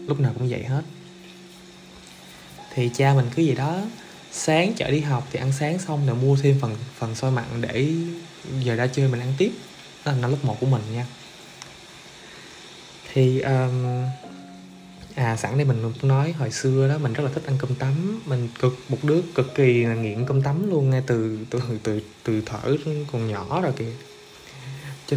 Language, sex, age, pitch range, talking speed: Vietnamese, male, 20-39, 120-145 Hz, 185 wpm